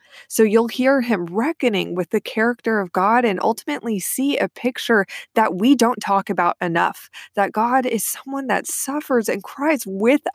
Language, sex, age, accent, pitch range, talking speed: English, female, 20-39, American, 170-230 Hz, 175 wpm